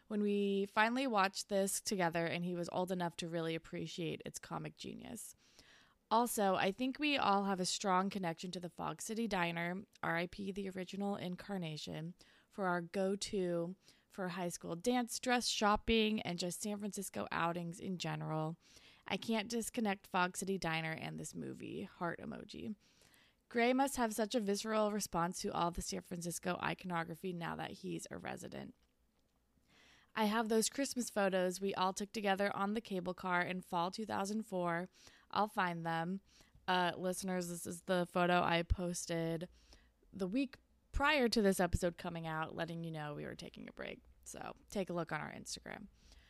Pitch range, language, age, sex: 175-220 Hz, English, 20-39, female